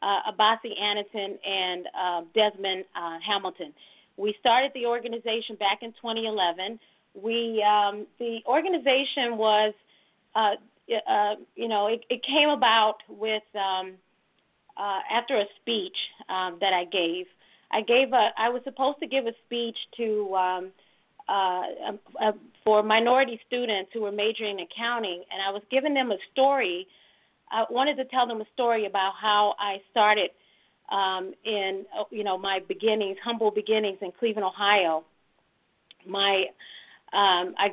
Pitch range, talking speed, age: 195-230 Hz, 150 wpm, 40-59